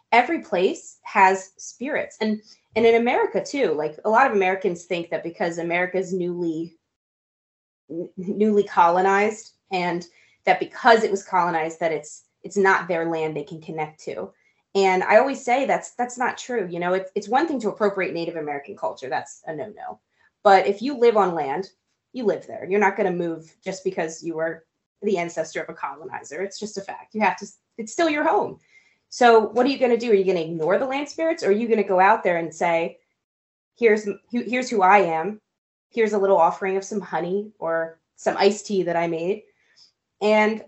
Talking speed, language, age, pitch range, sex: 205 wpm, English, 20-39, 170-215 Hz, female